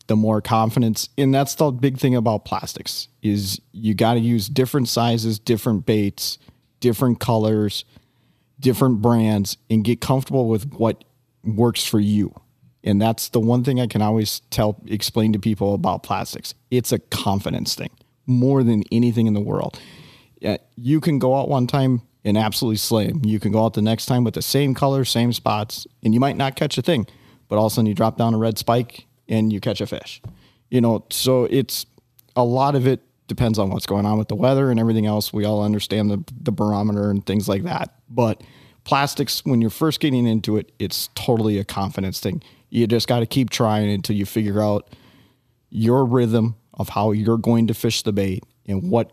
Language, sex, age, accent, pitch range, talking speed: English, male, 40-59, American, 105-125 Hz, 200 wpm